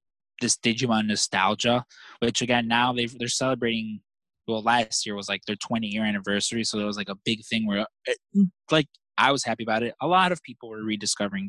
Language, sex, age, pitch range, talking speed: English, male, 20-39, 105-135 Hz, 195 wpm